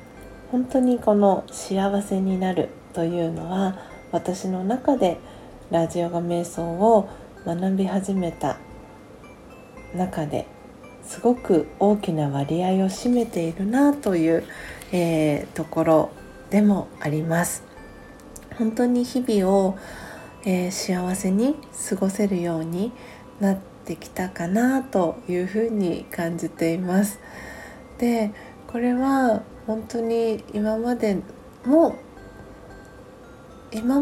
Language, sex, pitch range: Japanese, female, 175-220 Hz